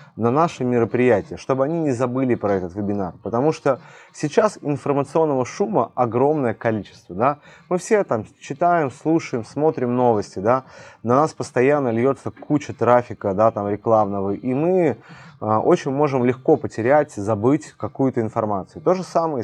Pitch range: 110-145 Hz